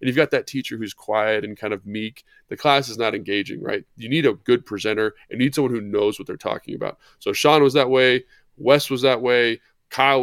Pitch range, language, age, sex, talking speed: 110-135 Hz, English, 20-39, male, 240 wpm